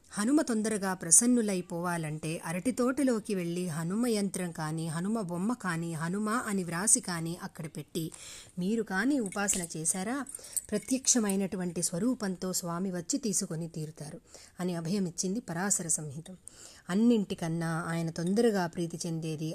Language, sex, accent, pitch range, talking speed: Telugu, female, native, 165-210 Hz, 110 wpm